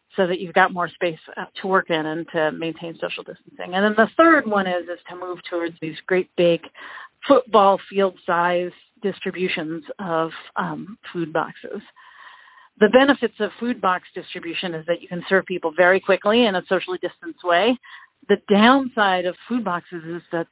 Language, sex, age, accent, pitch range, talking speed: English, female, 40-59, American, 180-235 Hz, 180 wpm